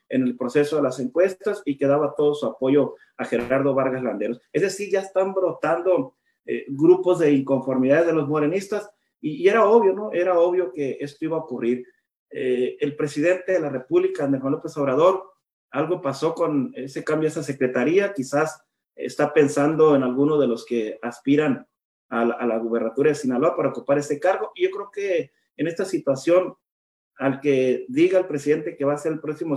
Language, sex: Spanish, male